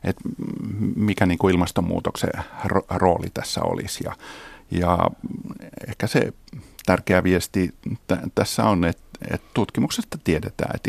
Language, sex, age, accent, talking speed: Finnish, male, 50-69, native, 115 wpm